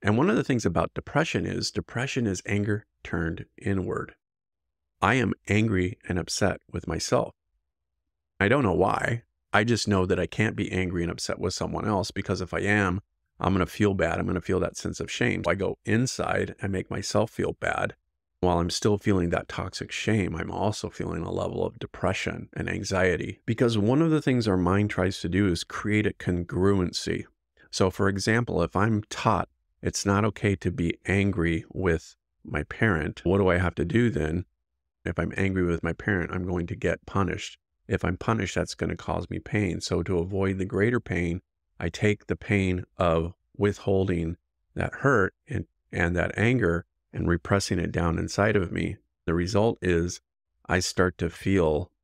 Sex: male